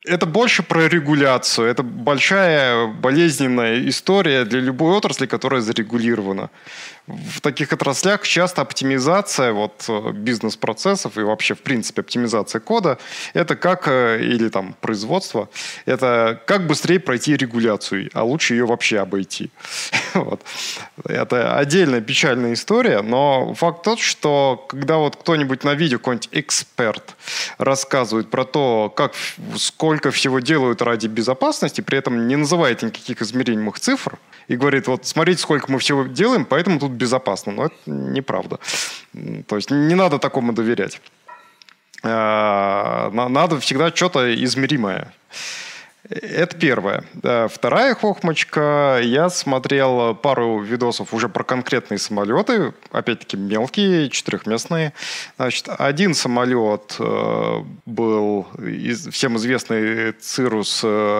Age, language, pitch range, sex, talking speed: 20-39, Russian, 115-160 Hz, male, 115 wpm